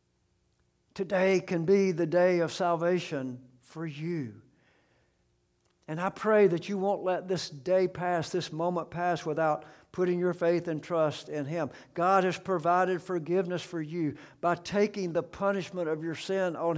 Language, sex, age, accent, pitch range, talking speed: English, male, 60-79, American, 150-185 Hz, 155 wpm